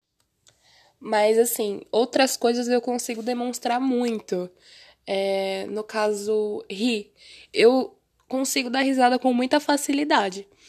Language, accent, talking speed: Portuguese, Brazilian, 100 wpm